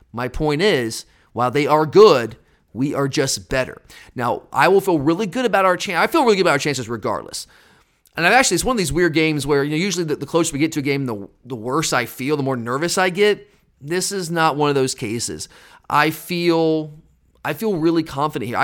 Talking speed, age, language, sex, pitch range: 235 wpm, 30-49, English, male, 135-170 Hz